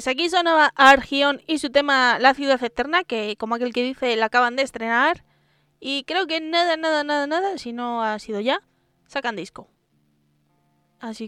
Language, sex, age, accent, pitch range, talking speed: Spanish, female, 20-39, Spanish, 225-310 Hz, 175 wpm